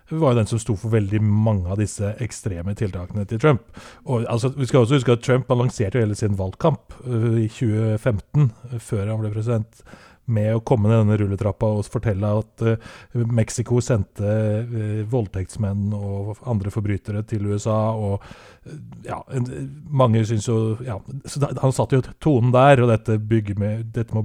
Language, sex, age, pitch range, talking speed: English, male, 30-49, 105-125 Hz, 175 wpm